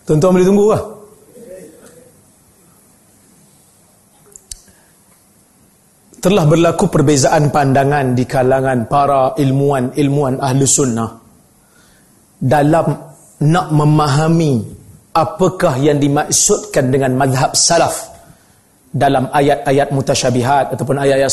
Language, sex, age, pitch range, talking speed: Arabic, male, 40-59, 140-170 Hz, 75 wpm